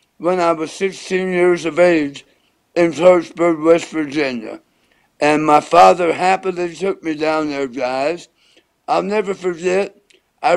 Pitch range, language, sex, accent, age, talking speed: 175-220 Hz, English, male, American, 60-79, 135 wpm